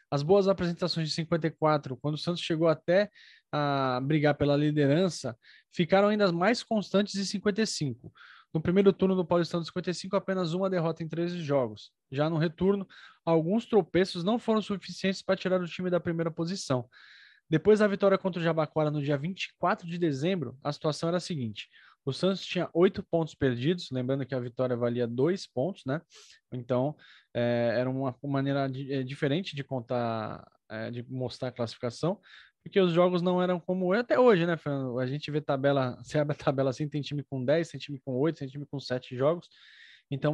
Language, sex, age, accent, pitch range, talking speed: Portuguese, male, 20-39, Brazilian, 140-180 Hz, 190 wpm